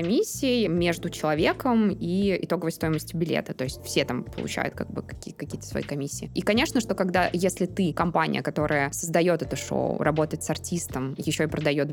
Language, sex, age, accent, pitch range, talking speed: Russian, female, 20-39, native, 150-175 Hz, 175 wpm